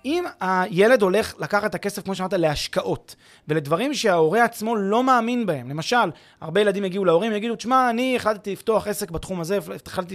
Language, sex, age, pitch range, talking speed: Hebrew, male, 30-49, 170-220 Hz, 170 wpm